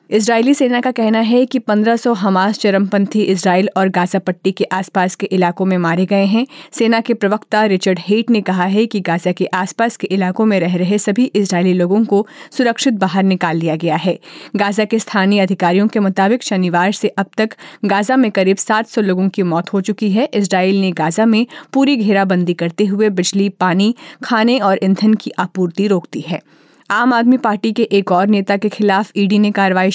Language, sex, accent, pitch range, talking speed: Hindi, female, native, 185-220 Hz, 195 wpm